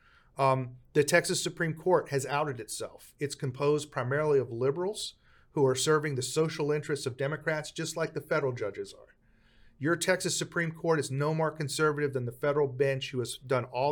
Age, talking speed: 40-59, 185 wpm